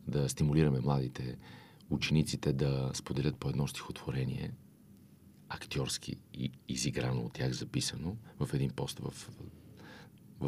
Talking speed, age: 110 wpm, 40-59